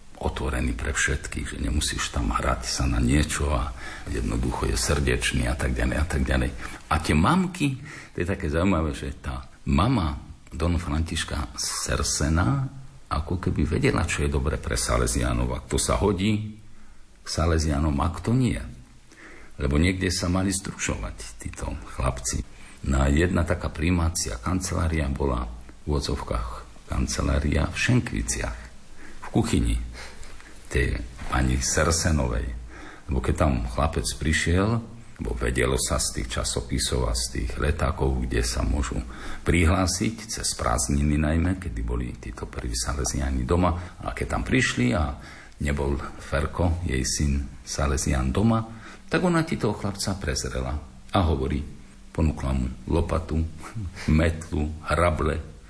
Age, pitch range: 50-69, 65-90 Hz